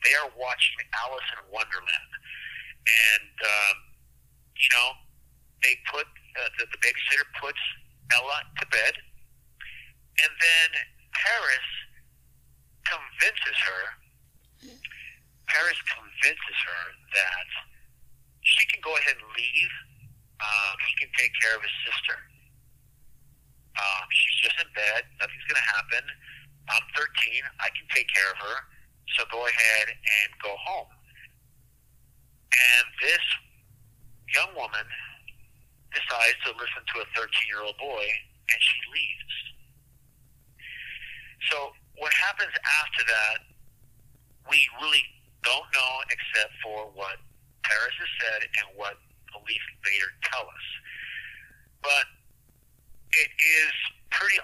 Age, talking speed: 50-69, 120 wpm